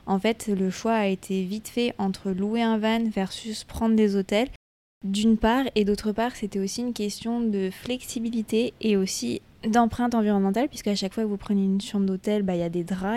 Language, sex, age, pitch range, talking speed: French, female, 20-39, 200-225 Hz, 215 wpm